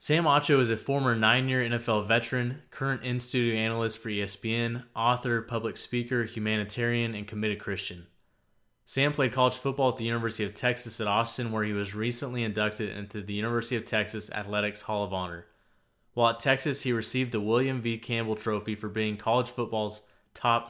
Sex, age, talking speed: male, 20-39, 175 wpm